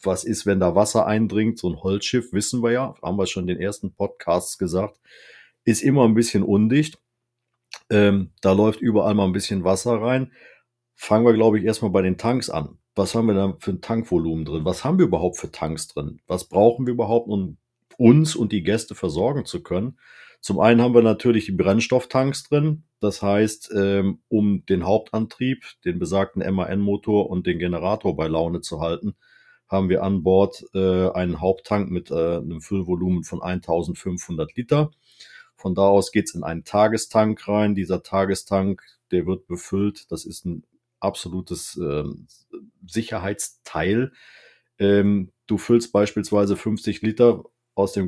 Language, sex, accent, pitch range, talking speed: German, male, German, 95-115 Hz, 170 wpm